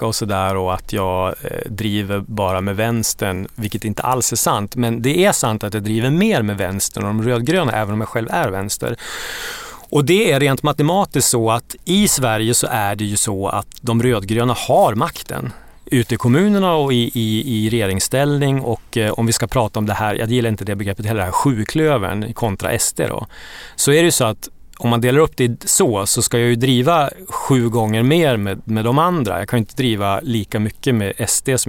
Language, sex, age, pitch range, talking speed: English, male, 30-49, 105-135 Hz, 220 wpm